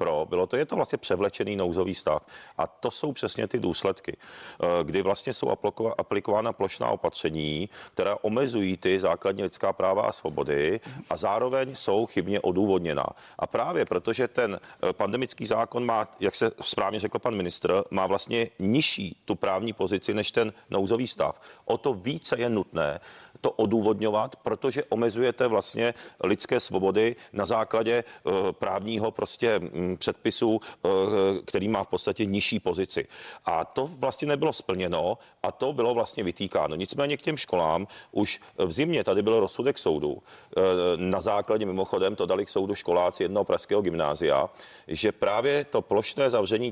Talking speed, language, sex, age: 150 wpm, Czech, male, 40-59